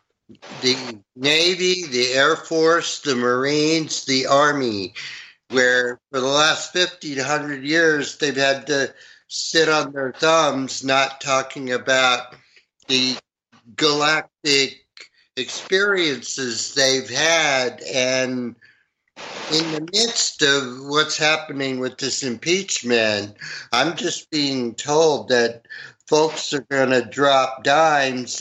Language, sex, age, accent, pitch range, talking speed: English, male, 60-79, American, 125-155 Hz, 110 wpm